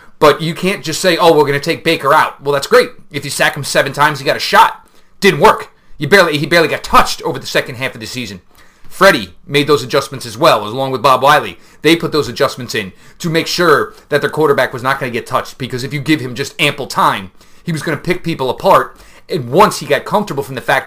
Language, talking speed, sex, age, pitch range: English, 255 wpm, male, 30-49, 140-180 Hz